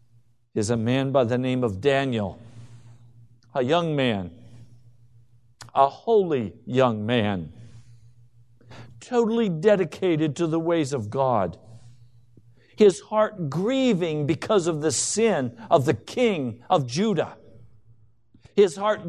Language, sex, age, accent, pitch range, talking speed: English, male, 50-69, American, 115-175 Hz, 115 wpm